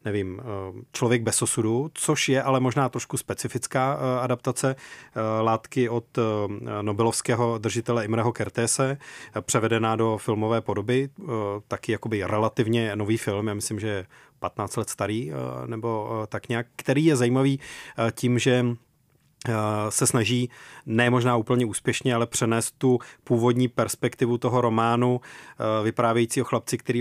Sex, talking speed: male, 125 wpm